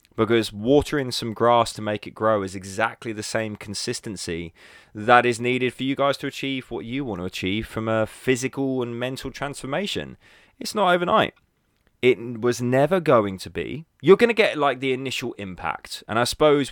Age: 20-39